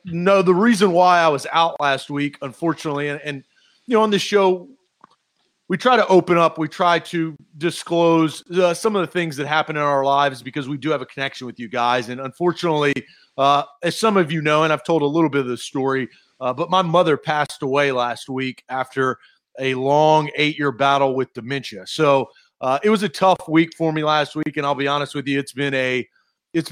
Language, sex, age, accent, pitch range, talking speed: English, male, 30-49, American, 130-160 Hz, 220 wpm